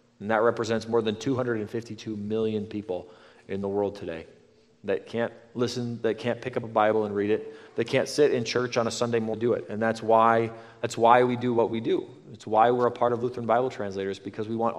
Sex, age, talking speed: male, 30-49, 235 wpm